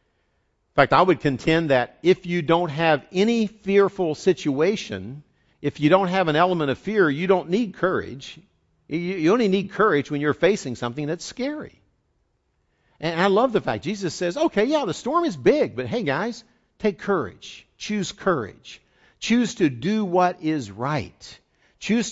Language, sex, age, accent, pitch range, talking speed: English, male, 60-79, American, 125-185 Hz, 170 wpm